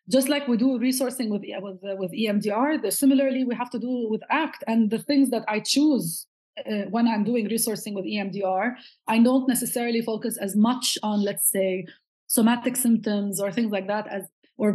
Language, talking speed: English, 185 wpm